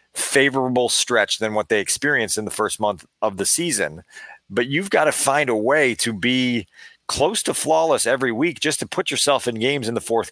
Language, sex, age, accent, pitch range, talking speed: English, male, 40-59, American, 110-140 Hz, 210 wpm